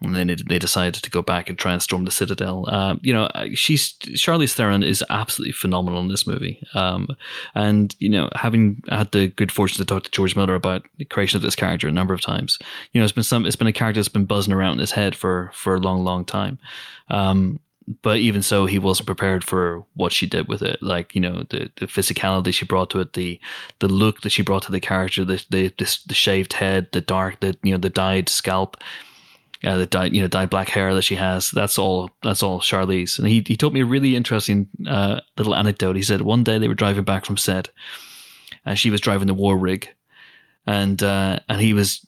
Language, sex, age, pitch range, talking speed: English, male, 20-39, 95-105 Hz, 235 wpm